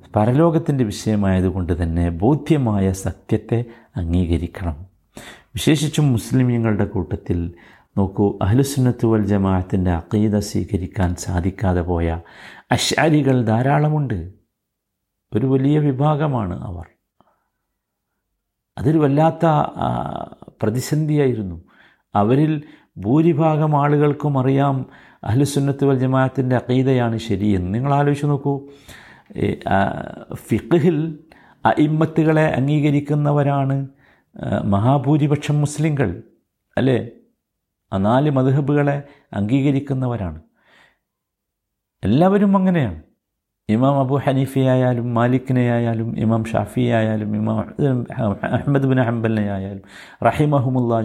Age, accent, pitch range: 50-69, native, 100-145 Hz